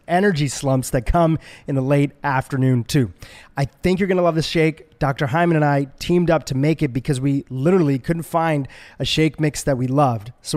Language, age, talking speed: English, 30-49, 215 wpm